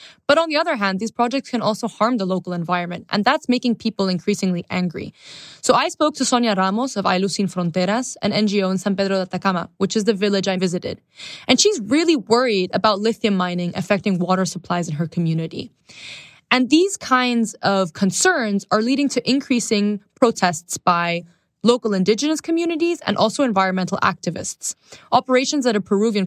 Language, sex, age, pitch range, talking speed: English, female, 20-39, 180-235 Hz, 175 wpm